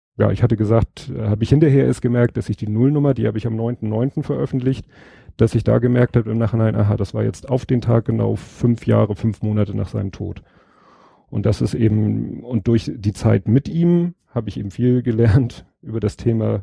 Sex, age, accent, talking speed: male, 40-59, German, 215 wpm